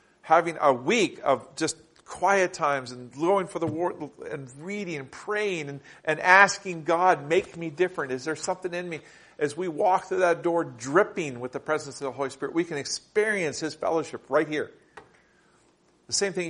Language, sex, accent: English, male, American